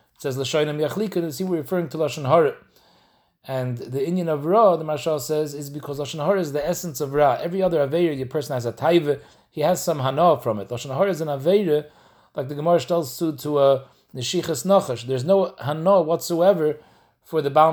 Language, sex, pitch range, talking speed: English, male, 130-165 Hz, 205 wpm